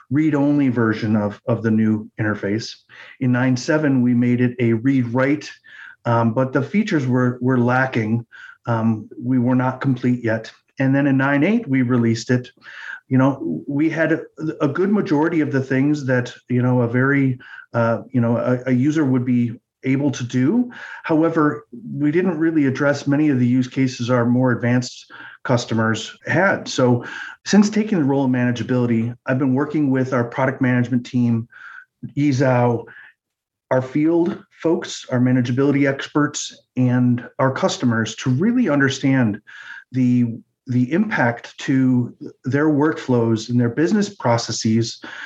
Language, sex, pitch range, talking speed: English, male, 120-145 Hz, 150 wpm